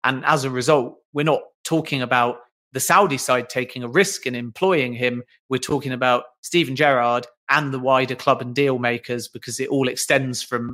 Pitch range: 120-140 Hz